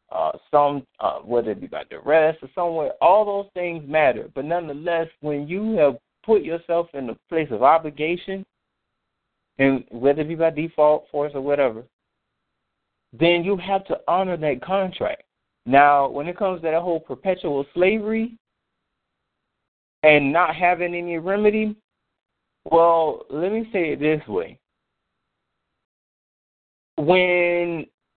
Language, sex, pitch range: English, male, 140-175 Hz